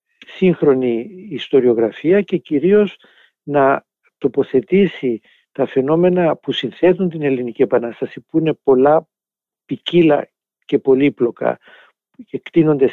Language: Greek